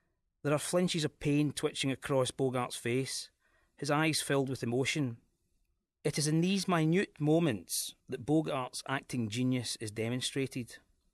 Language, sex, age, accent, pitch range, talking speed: English, male, 30-49, British, 125-155 Hz, 140 wpm